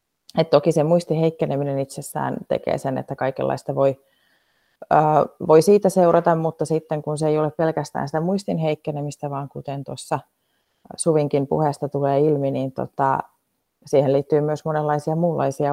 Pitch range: 145-170 Hz